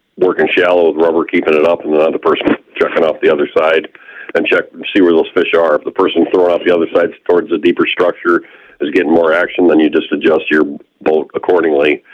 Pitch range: 335-430 Hz